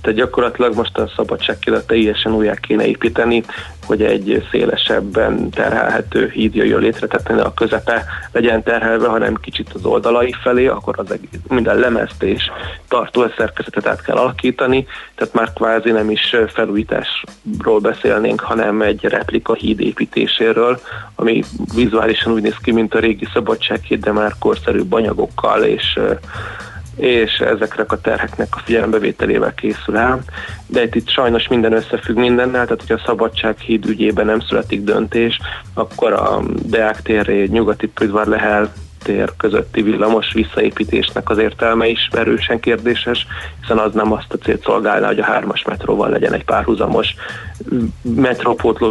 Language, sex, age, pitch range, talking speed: Hungarian, male, 30-49, 105-115 Hz, 140 wpm